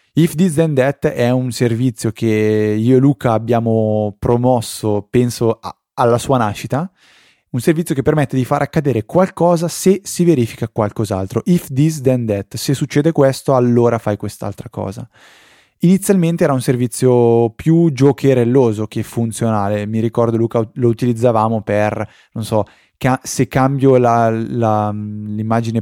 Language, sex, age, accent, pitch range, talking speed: Italian, male, 20-39, native, 110-135 Hz, 140 wpm